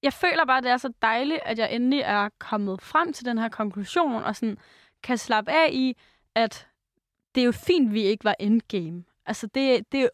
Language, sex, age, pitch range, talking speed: Danish, female, 20-39, 215-260 Hz, 215 wpm